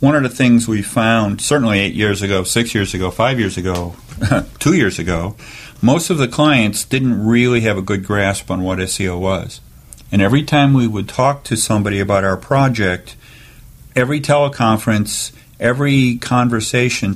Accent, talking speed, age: American, 170 wpm, 50-69